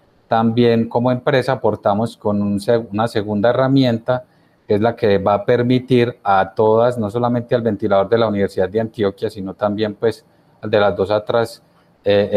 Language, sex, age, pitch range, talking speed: Spanish, male, 30-49, 105-125 Hz, 175 wpm